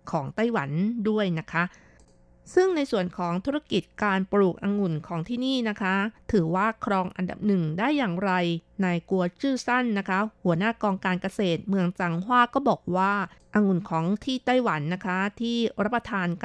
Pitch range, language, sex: 175-220 Hz, Thai, female